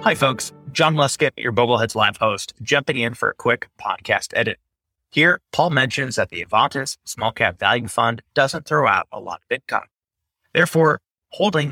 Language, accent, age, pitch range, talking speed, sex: English, American, 30-49, 115-150 Hz, 175 wpm, male